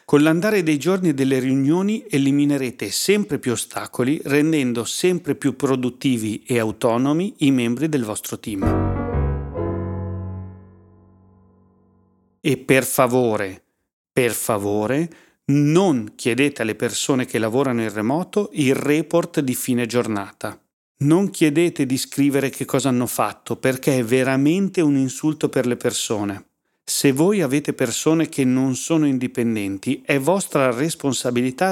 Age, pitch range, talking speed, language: 40-59, 115-150 Hz, 125 wpm, Italian